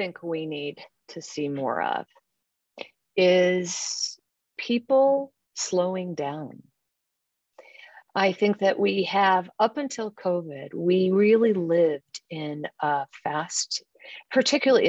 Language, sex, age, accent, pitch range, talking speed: English, female, 50-69, American, 160-205 Hz, 105 wpm